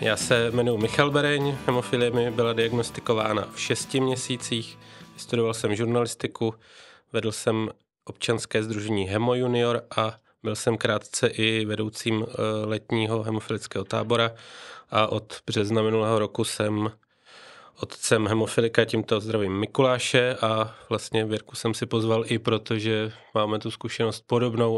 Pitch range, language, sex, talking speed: 110-120 Hz, Czech, male, 130 wpm